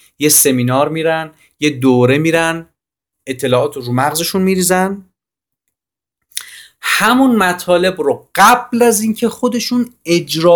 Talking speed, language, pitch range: 100 wpm, Persian, 135-190 Hz